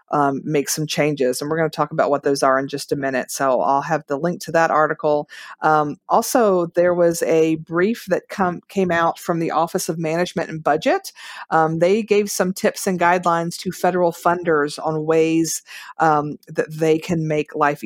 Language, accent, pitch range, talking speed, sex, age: English, American, 150-175 Hz, 200 wpm, female, 50-69